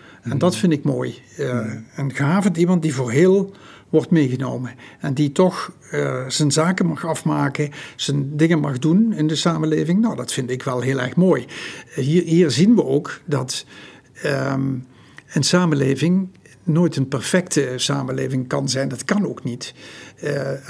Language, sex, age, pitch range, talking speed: Dutch, male, 60-79, 135-170 Hz, 160 wpm